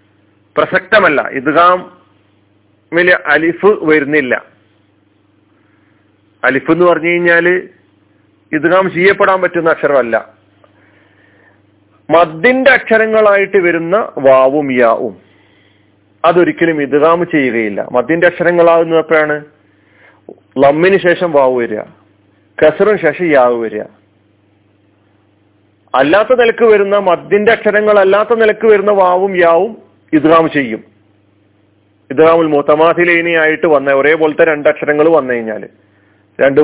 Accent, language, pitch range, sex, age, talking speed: native, Malayalam, 105-170 Hz, male, 40-59, 80 wpm